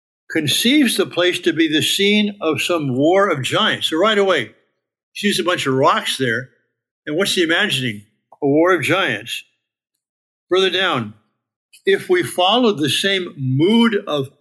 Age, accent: 60-79, American